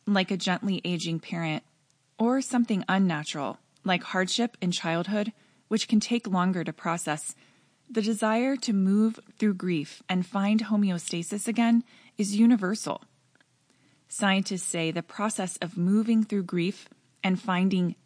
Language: English